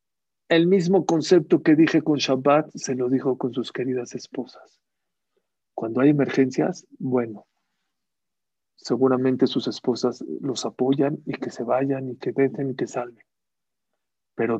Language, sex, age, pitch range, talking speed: English, male, 50-69, 135-180 Hz, 140 wpm